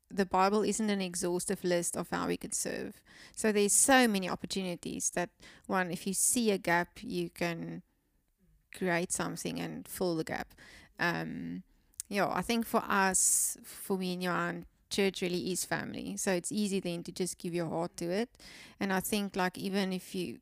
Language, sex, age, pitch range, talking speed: English, female, 20-39, 175-195 Hz, 190 wpm